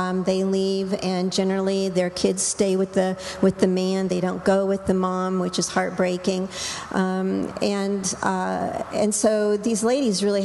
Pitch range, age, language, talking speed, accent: 185-205 Hz, 50-69, English, 180 wpm, American